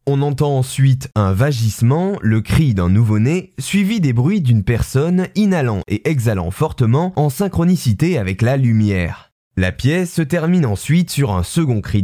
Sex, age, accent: male, 20-39, French